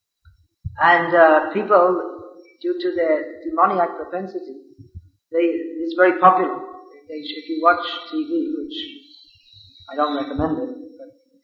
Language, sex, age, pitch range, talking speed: English, male, 40-59, 150-205 Hz, 125 wpm